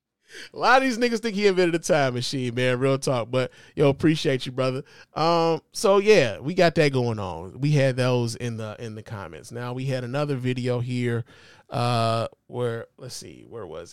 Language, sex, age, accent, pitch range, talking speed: English, male, 20-39, American, 120-155 Hz, 200 wpm